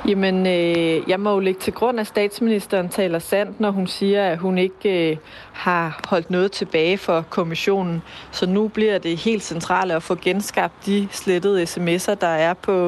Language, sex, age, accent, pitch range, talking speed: Danish, female, 30-49, native, 175-200 Hz, 170 wpm